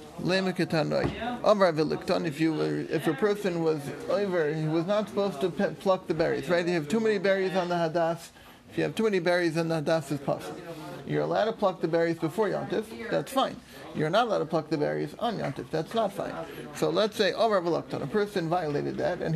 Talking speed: 210 wpm